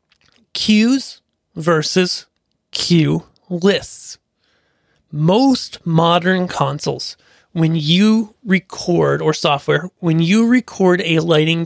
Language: English